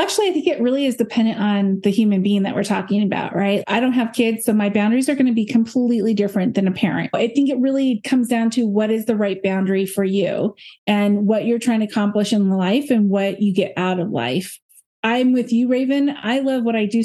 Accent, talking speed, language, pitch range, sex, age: American, 245 wpm, English, 210-260 Hz, female, 30-49